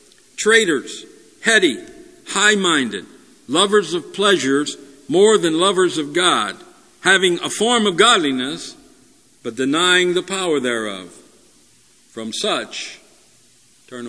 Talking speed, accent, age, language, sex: 100 wpm, American, 50-69, English, male